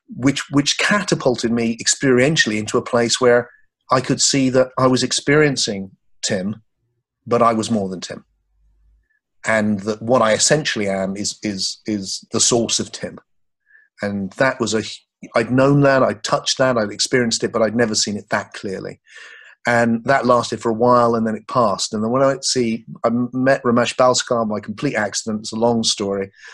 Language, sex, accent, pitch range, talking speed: English, male, British, 105-125 Hz, 190 wpm